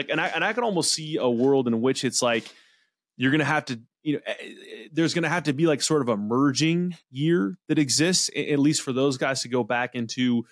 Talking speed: 250 wpm